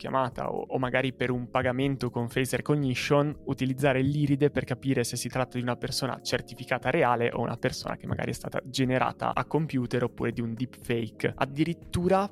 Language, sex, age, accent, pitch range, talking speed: Italian, male, 20-39, native, 125-140 Hz, 180 wpm